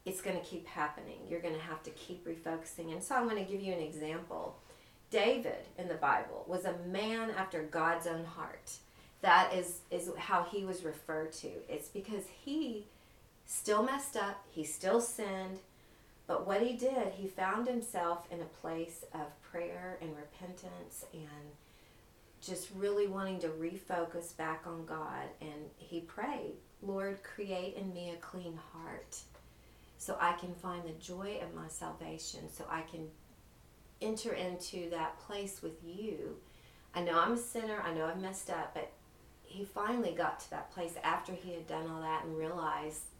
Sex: female